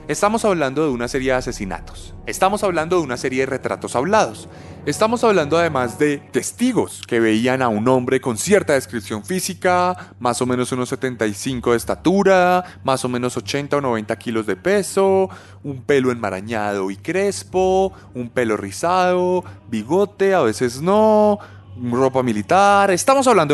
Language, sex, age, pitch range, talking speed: Spanish, male, 20-39, 105-165 Hz, 155 wpm